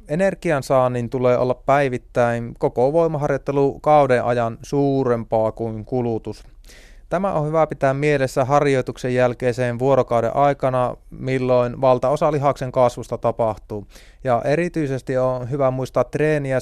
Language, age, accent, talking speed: Finnish, 30-49, native, 110 wpm